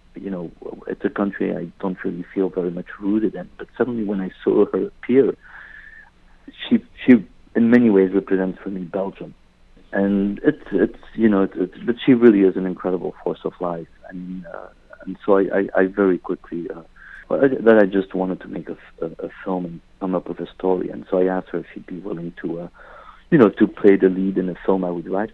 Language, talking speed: English, 225 wpm